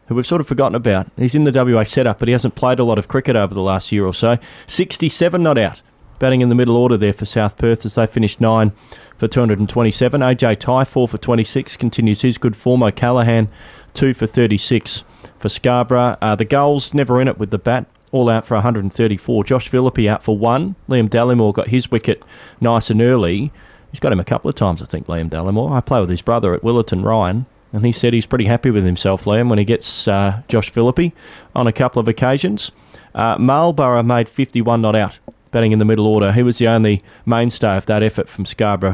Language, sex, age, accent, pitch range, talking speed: English, male, 30-49, Australian, 105-125 Hz, 220 wpm